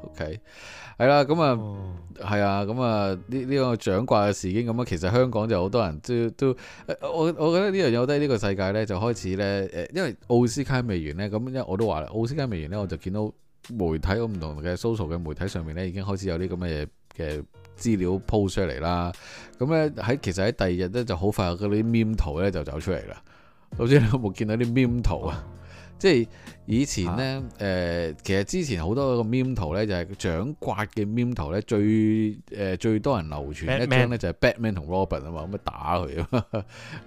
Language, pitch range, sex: Chinese, 90-115 Hz, male